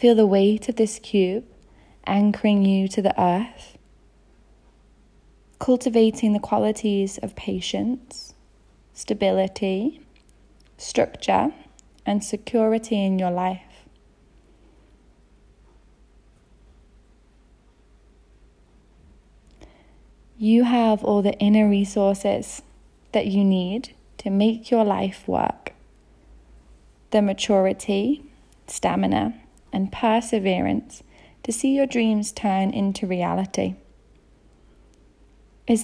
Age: 10-29